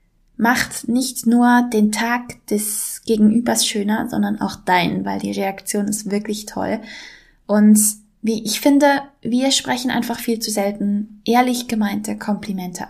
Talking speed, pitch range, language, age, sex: 140 wpm, 205-240 Hz, German, 20-39, female